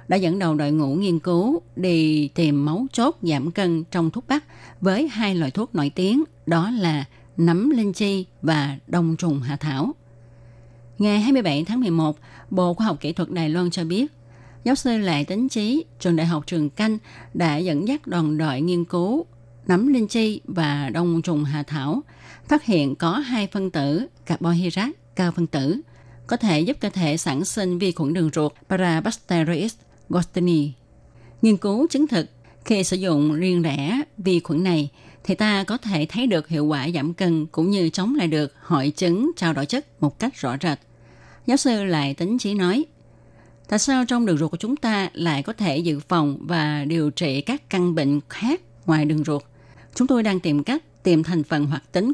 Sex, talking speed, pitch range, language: female, 195 wpm, 150-205 Hz, Vietnamese